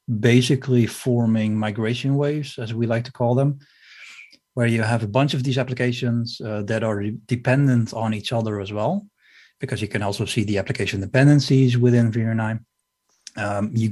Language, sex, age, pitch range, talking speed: English, male, 30-49, 110-125 Hz, 170 wpm